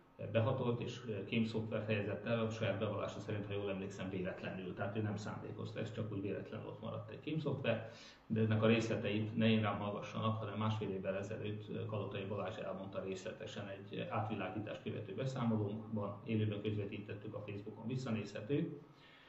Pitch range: 105-120 Hz